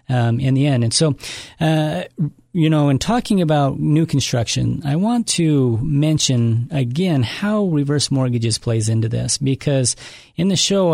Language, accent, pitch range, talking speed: English, American, 120-155 Hz, 160 wpm